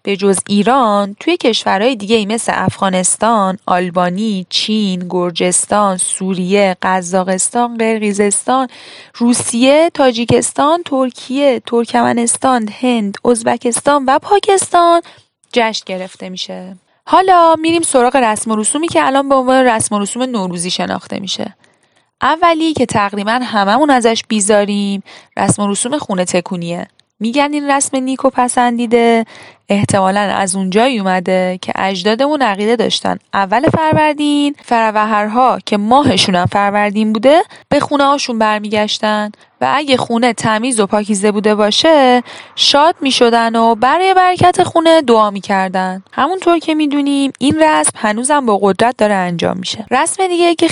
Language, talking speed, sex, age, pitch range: Persian, 130 wpm, female, 10-29, 205-275 Hz